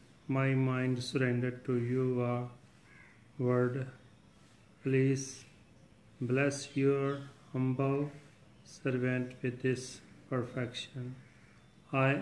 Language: Punjabi